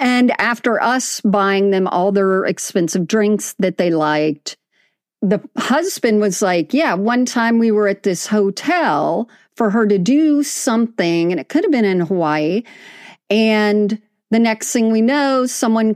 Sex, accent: female, American